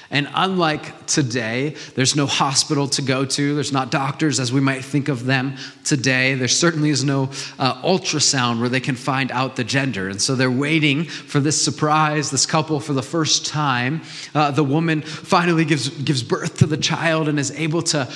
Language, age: English, 30-49